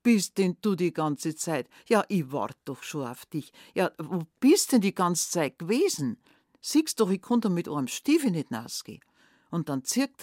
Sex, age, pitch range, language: female, 60-79, 150-195 Hz, German